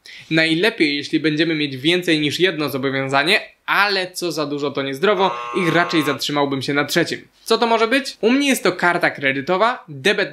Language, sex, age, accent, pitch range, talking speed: Polish, male, 20-39, native, 150-200 Hz, 180 wpm